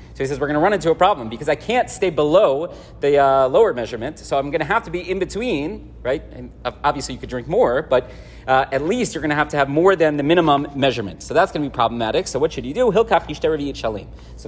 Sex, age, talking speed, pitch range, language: male, 30-49, 255 wpm, 145-175 Hz, English